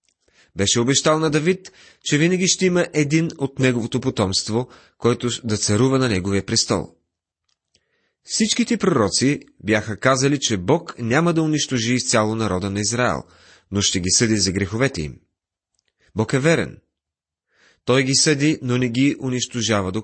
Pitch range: 100-145 Hz